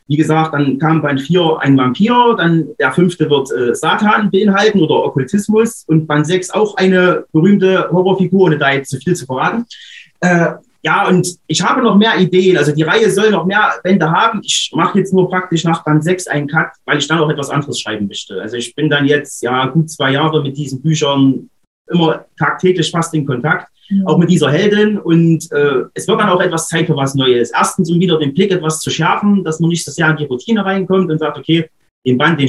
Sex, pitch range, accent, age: male, 150-185 Hz, German, 30-49